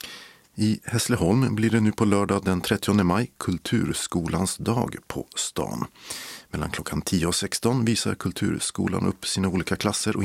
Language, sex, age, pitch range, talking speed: Swedish, male, 50-69, 90-115 Hz, 150 wpm